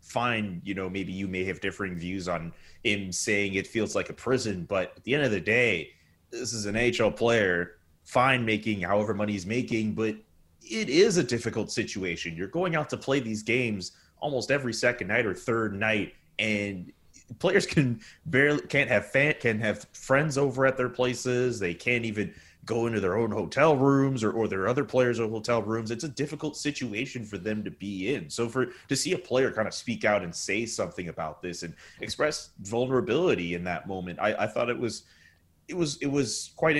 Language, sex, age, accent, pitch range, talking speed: English, male, 30-49, American, 95-125 Hz, 200 wpm